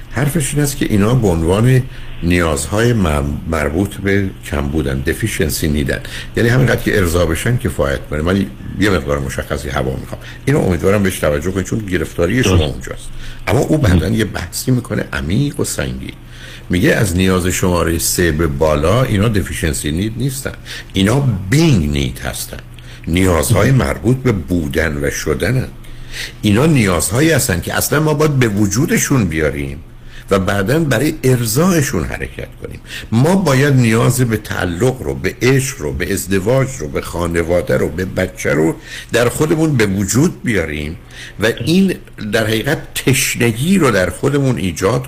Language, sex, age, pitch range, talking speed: Persian, male, 60-79, 85-125 Hz, 150 wpm